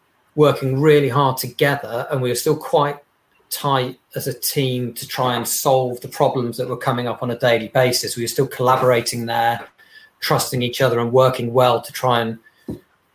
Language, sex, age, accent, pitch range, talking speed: English, male, 30-49, British, 125-145 Hz, 185 wpm